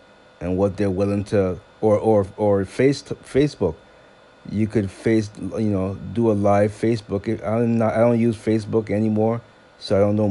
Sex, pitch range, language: male, 95-105 Hz, English